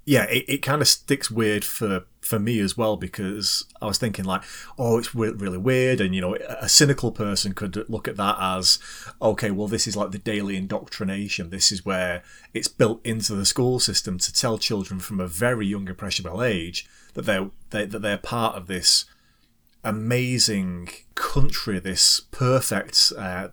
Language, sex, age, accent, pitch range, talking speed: English, male, 30-49, British, 95-120 Hz, 185 wpm